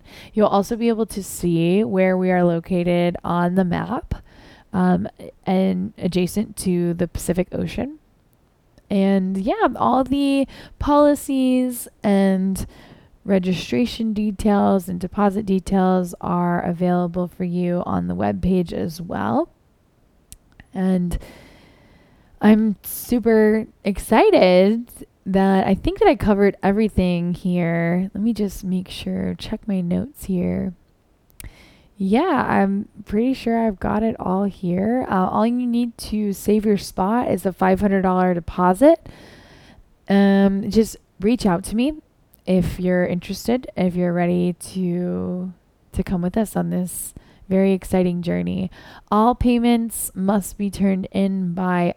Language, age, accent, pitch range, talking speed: English, 10-29, American, 180-215 Hz, 130 wpm